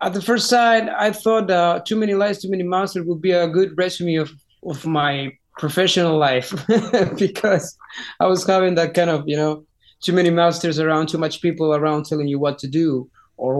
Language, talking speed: English, 205 wpm